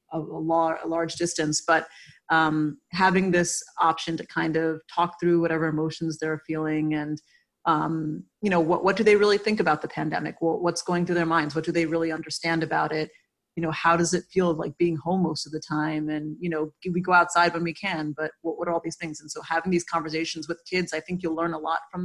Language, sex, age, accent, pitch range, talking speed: English, female, 30-49, American, 160-175 Hz, 235 wpm